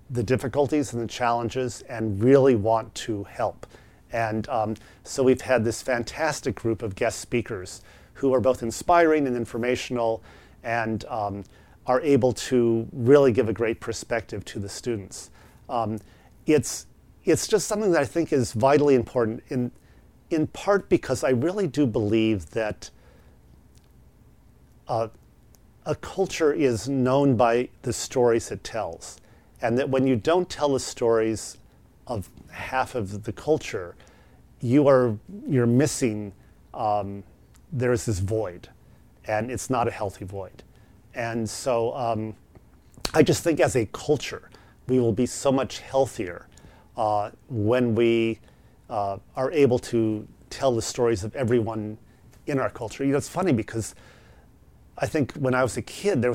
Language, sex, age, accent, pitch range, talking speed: English, male, 40-59, American, 110-130 Hz, 150 wpm